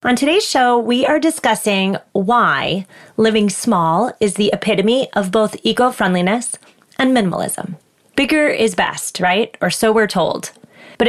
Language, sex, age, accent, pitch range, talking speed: English, female, 30-49, American, 195-250 Hz, 140 wpm